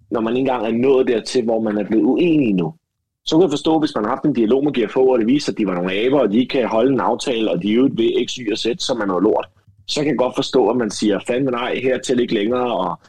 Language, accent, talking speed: Danish, native, 320 wpm